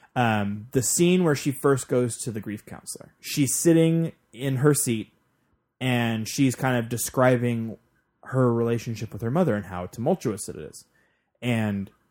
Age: 20-39